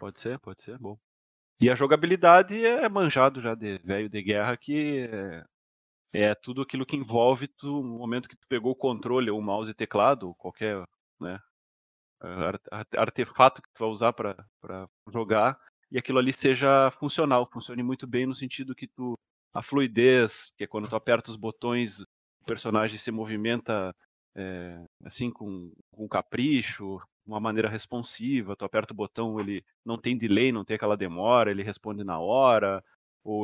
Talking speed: 170 wpm